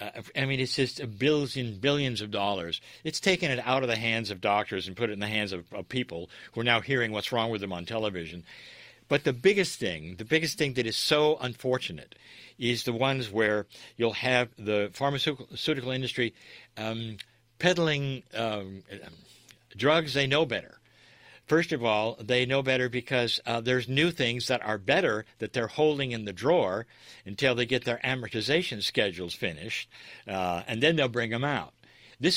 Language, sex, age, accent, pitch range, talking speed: English, male, 60-79, American, 110-140 Hz, 185 wpm